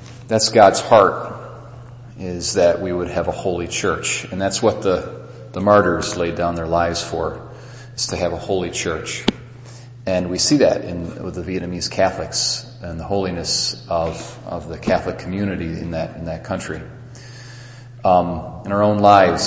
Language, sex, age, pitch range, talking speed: English, male, 40-59, 85-115 Hz, 170 wpm